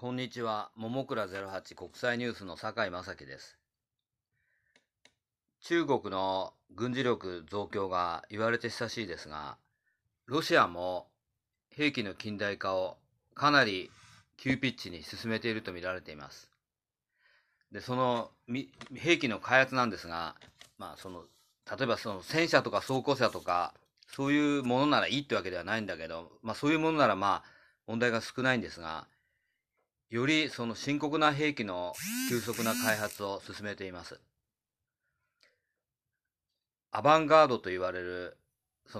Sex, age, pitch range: male, 40-59, 95-130 Hz